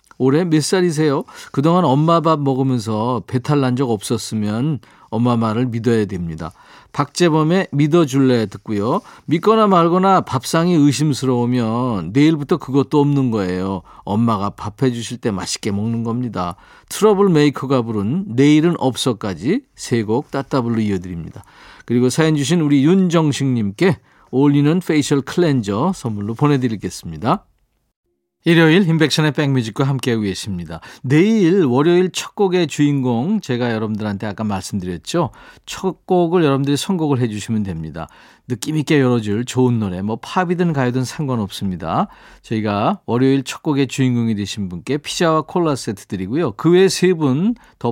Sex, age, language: male, 40-59, Korean